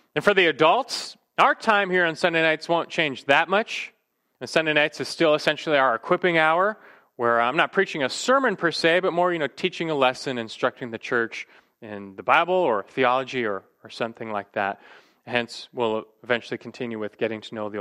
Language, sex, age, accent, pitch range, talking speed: English, male, 30-49, American, 120-170 Hz, 200 wpm